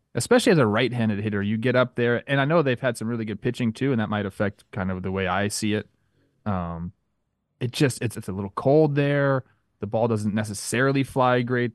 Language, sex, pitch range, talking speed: English, male, 105-135 Hz, 230 wpm